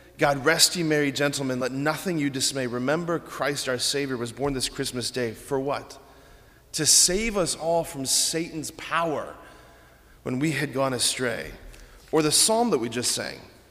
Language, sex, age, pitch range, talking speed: English, male, 30-49, 125-160 Hz, 170 wpm